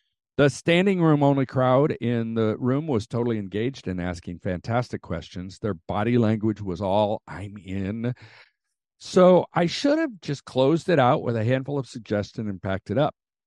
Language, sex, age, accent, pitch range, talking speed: English, male, 50-69, American, 95-130 Hz, 165 wpm